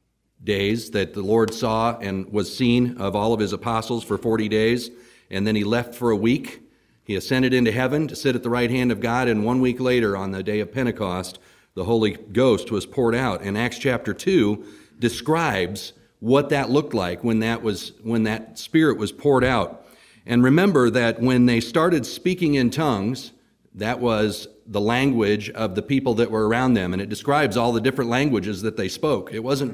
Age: 40-59